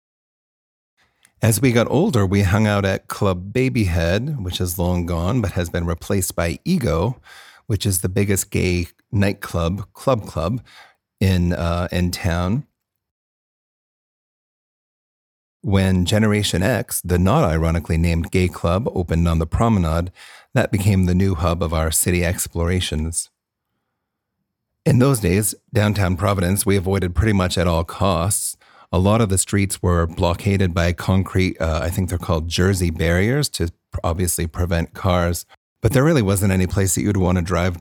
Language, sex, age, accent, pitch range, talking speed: English, male, 40-59, American, 85-105 Hz, 155 wpm